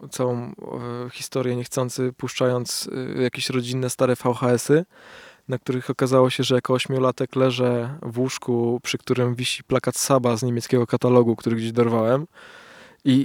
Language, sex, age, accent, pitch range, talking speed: Polish, male, 20-39, native, 120-135 Hz, 145 wpm